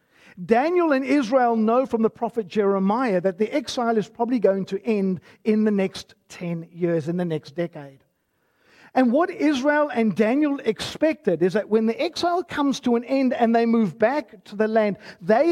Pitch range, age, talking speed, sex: 185-255 Hz, 50-69, 185 wpm, male